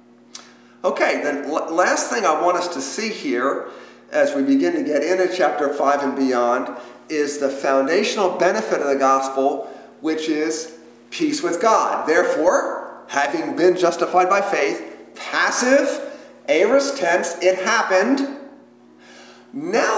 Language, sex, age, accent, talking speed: English, male, 50-69, American, 130 wpm